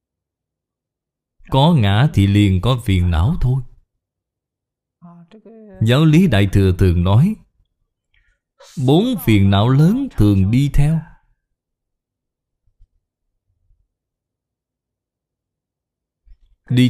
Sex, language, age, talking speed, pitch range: male, Vietnamese, 20-39, 80 wpm, 95-130 Hz